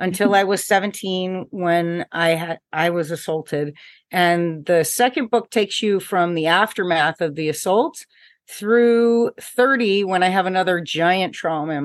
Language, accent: English, American